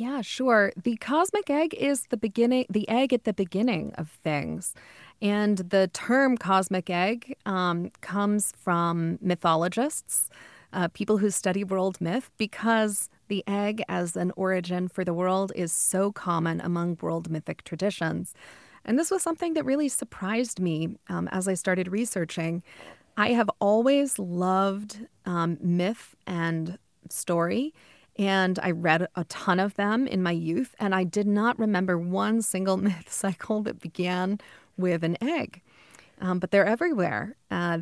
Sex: female